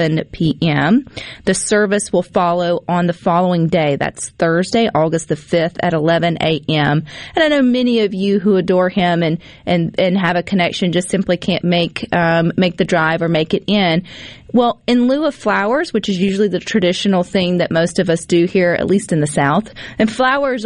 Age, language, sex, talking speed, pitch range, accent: 30-49, English, female, 200 wpm, 170-200 Hz, American